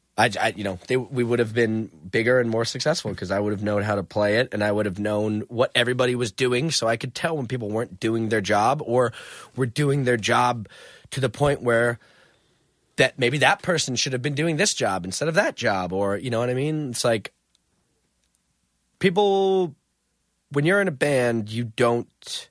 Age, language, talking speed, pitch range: 30-49, English, 215 wpm, 105-135 Hz